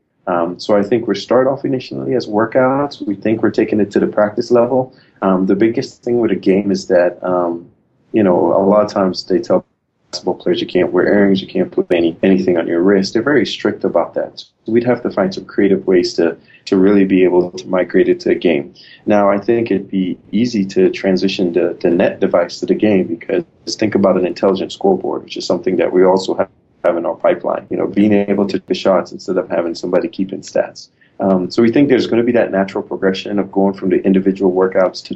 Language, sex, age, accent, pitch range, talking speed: English, male, 20-39, American, 95-105 Hz, 235 wpm